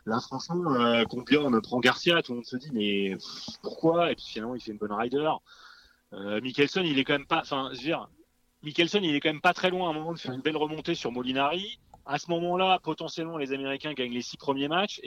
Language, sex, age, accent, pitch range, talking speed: French, male, 30-49, French, 120-165 Hz, 245 wpm